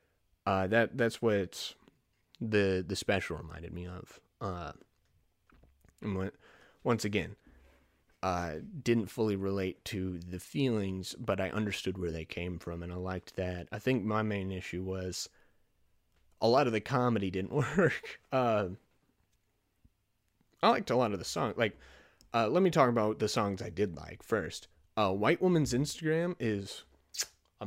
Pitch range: 95-120 Hz